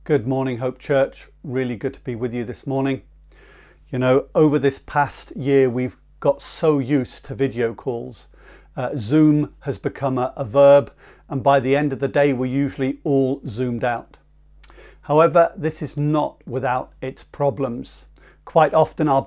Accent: British